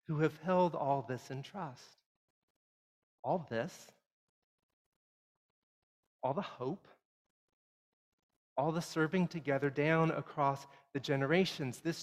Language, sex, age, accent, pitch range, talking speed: English, male, 40-59, American, 140-175 Hz, 105 wpm